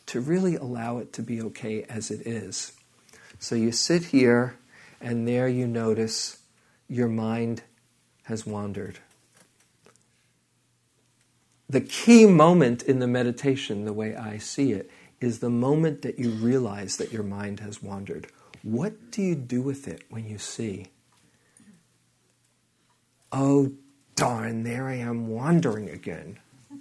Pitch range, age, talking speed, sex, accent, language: 115-160 Hz, 50-69, 135 wpm, male, American, English